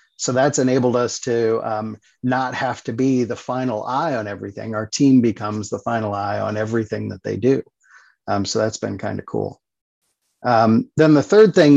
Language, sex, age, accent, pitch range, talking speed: English, male, 50-69, American, 115-140 Hz, 190 wpm